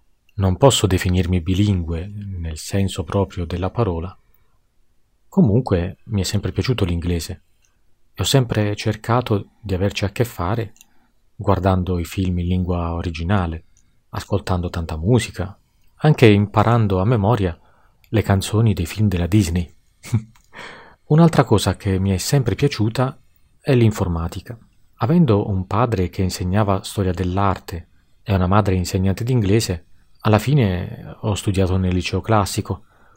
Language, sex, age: Russian, male, 40-59